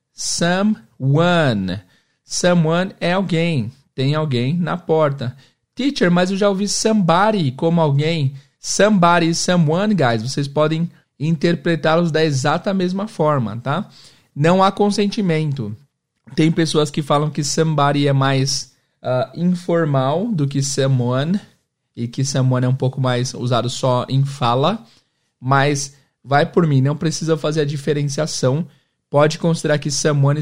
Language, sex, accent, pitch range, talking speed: Portuguese, male, Brazilian, 135-170 Hz, 130 wpm